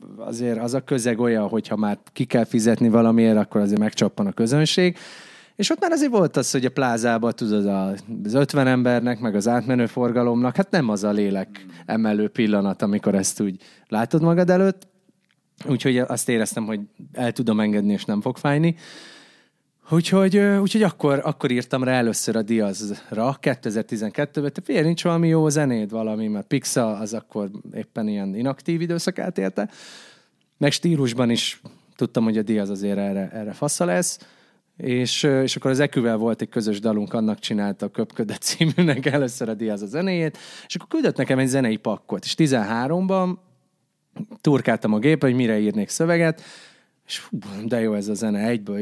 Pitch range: 110-155 Hz